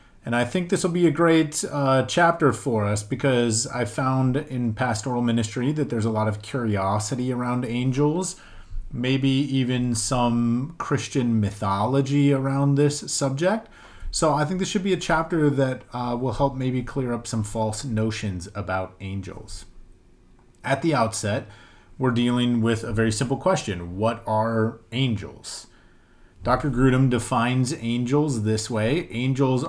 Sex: male